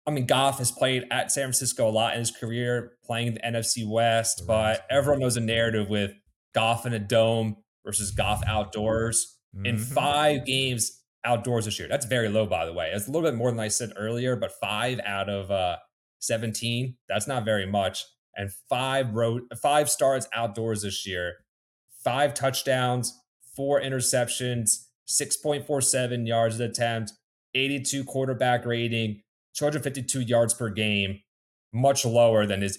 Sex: male